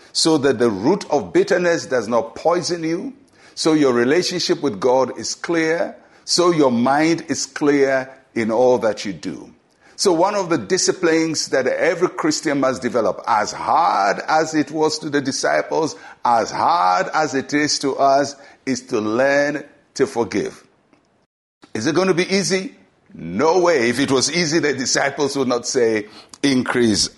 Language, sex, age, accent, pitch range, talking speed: English, male, 60-79, Nigerian, 130-185 Hz, 165 wpm